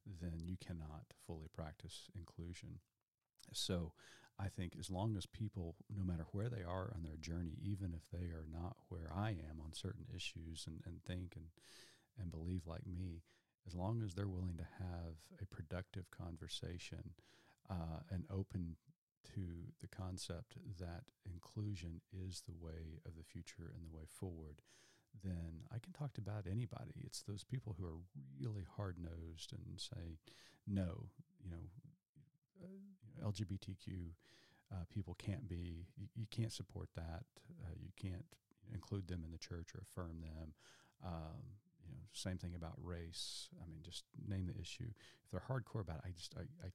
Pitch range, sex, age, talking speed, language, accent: 85-110 Hz, male, 40-59, 170 wpm, English, American